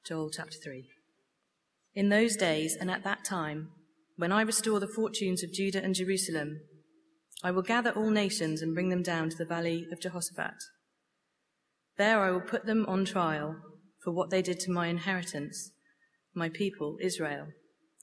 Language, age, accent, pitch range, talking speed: English, 30-49, British, 170-210 Hz, 165 wpm